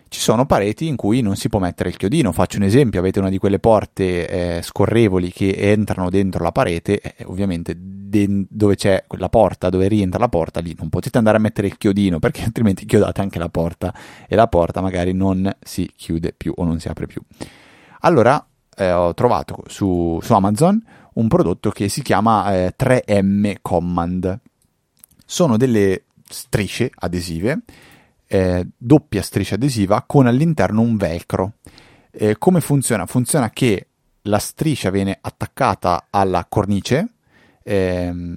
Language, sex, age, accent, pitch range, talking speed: Italian, male, 30-49, native, 90-115 Hz, 160 wpm